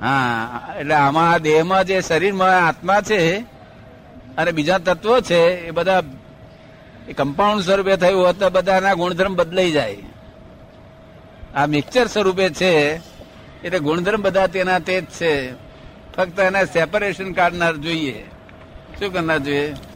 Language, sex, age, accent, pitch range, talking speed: Gujarati, male, 60-79, native, 150-190 Hz, 125 wpm